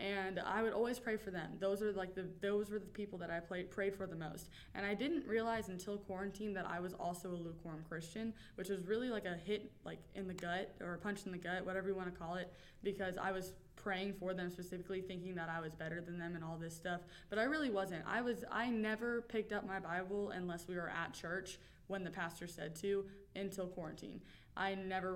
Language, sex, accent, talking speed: English, female, American, 240 wpm